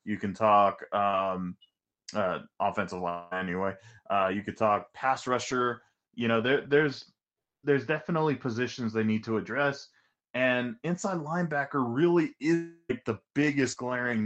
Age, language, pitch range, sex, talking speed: 20-39, English, 110-140 Hz, male, 140 wpm